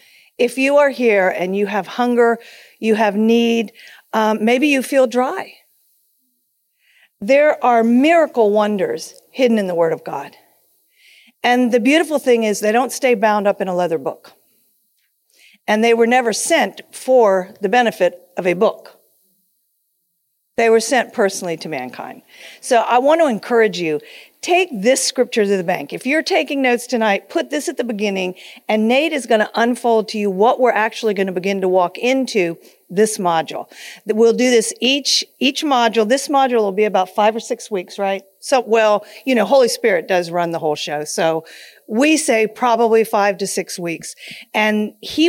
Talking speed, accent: 180 wpm, American